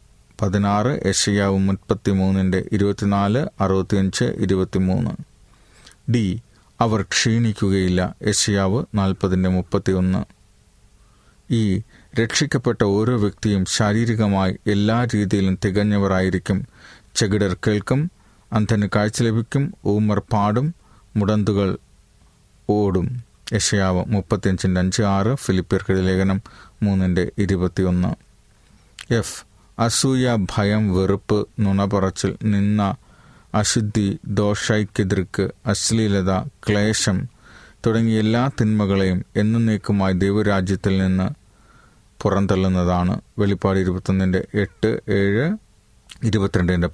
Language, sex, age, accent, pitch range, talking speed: Malayalam, male, 30-49, native, 95-110 Hz, 80 wpm